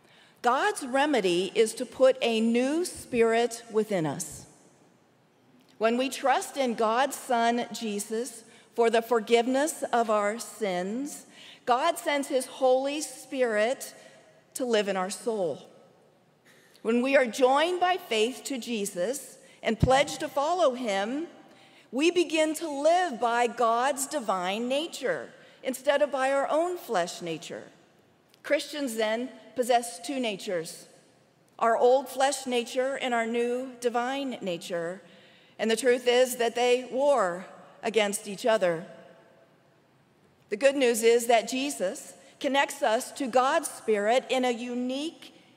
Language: English